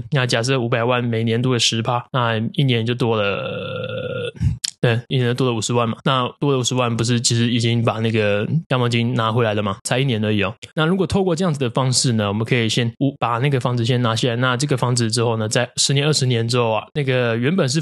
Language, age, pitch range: Chinese, 20-39, 115-135 Hz